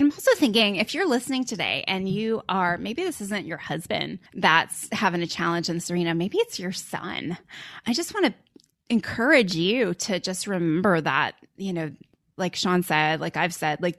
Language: English